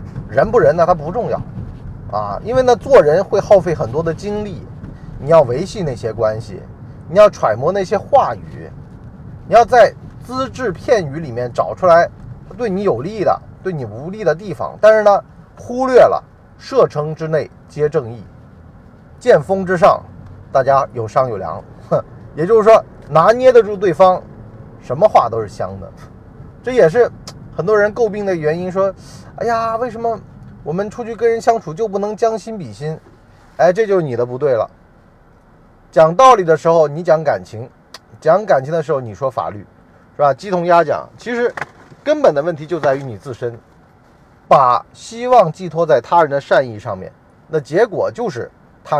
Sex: male